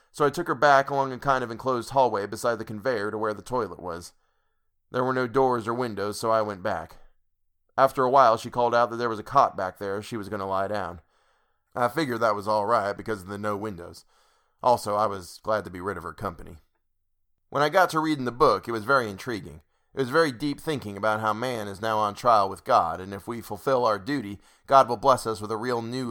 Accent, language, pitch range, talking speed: American, English, 100-130 Hz, 250 wpm